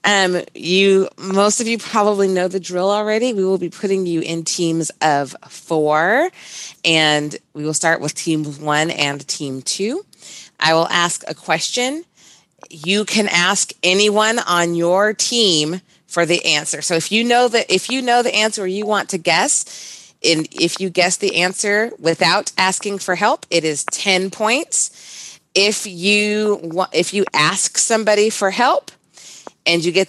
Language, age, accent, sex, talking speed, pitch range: English, 30-49, American, female, 170 wpm, 160-205 Hz